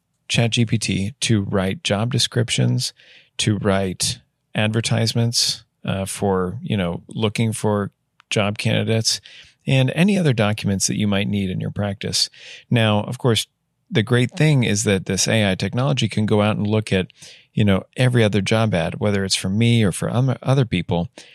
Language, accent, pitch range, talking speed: English, American, 100-125 Hz, 165 wpm